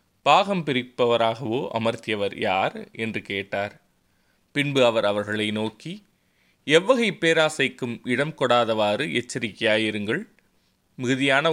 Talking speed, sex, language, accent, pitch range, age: 85 wpm, male, Tamil, native, 110-145 Hz, 20-39